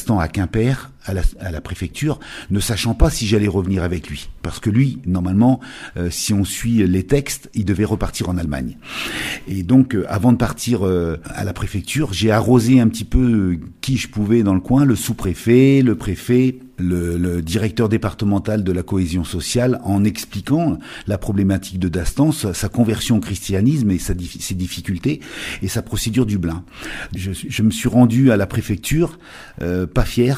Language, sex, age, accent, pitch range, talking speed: French, male, 50-69, French, 90-120 Hz, 185 wpm